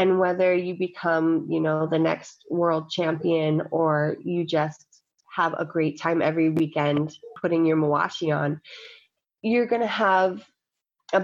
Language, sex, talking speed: English, female, 140 wpm